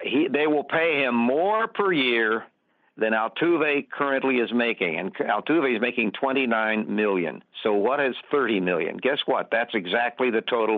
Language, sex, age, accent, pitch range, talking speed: English, male, 60-79, American, 120-165 Hz, 165 wpm